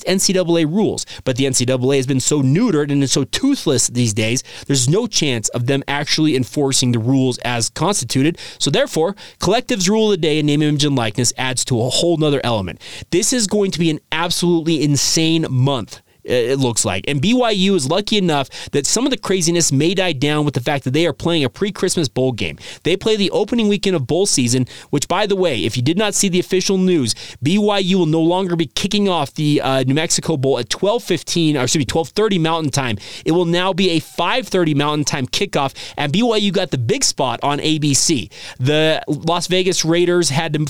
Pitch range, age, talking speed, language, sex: 135-185 Hz, 30-49, 210 wpm, English, male